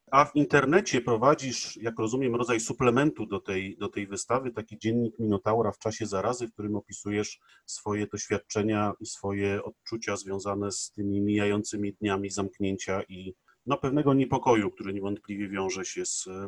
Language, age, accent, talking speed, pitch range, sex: Polish, 40-59, native, 145 wpm, 105-120 Hz, male